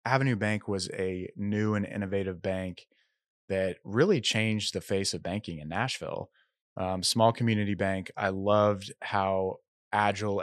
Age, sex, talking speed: 20-39, male, 145 wpm